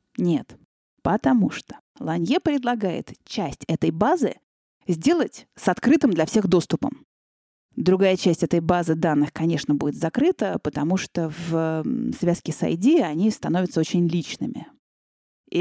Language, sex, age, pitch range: Russian, female, 20-39, 160-215 Hz